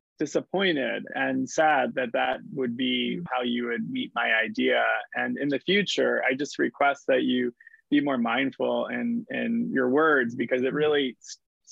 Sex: male